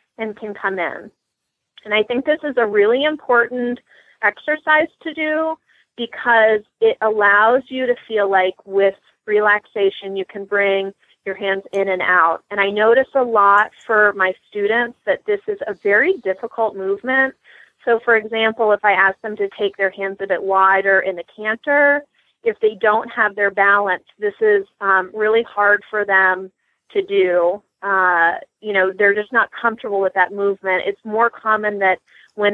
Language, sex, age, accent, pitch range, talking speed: English, female, 30-49, American, 195-230 Hz, 175 wpm